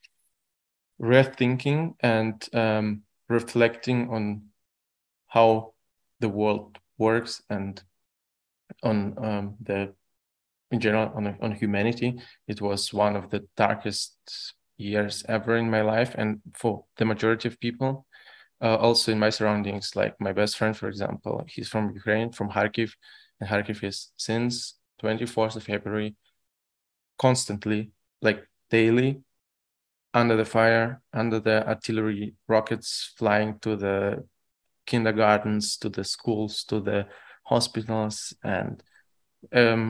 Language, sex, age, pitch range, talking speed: English, male, 20-39, 105-115 Hz, 120 wpm